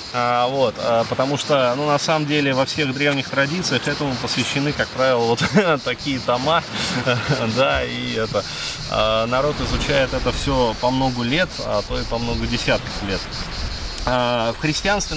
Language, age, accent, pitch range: Russian, 20-39, native, 110-145 Hz